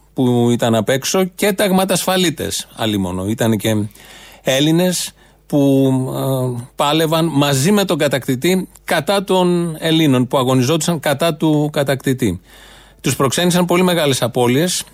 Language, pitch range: Greek, 120-160 Hz